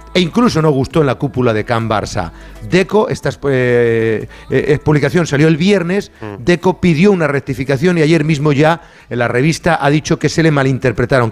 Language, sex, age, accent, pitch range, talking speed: Spanish, male, 40-59, Spanish, 135-165 Hz, 185 wpm